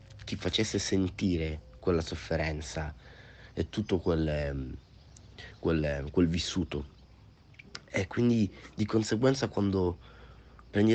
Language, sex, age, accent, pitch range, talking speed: Italian, male, 30-49, native, 85-110 Hz, 95 wpm